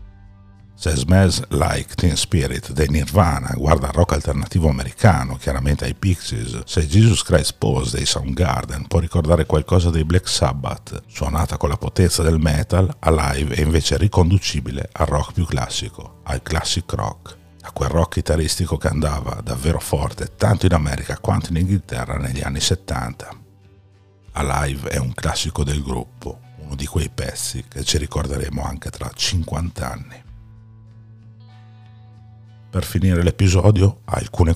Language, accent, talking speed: Italian, native, 140 wpm